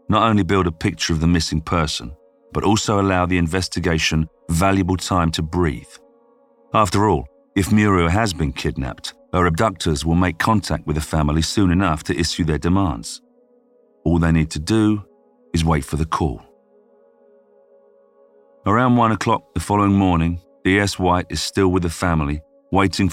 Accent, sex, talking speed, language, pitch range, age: British, male, 165 wpm, English, 80-100 Hz, 40-59